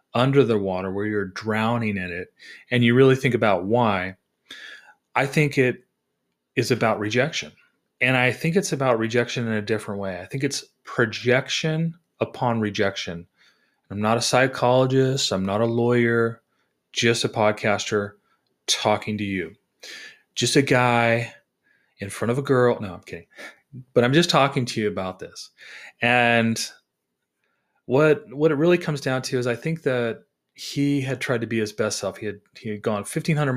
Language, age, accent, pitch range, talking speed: English, 30-49, American, 105-135 Hz, 170 wpm